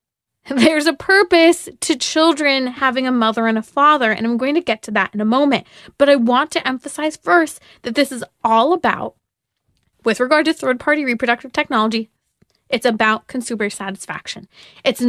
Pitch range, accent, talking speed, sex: 225-305 Hz, American, 175 wpm, female